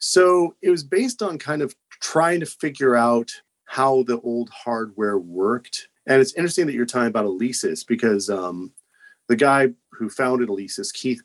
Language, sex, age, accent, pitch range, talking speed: English, male, 40-59, American, 115-145 Hz, 170 wpm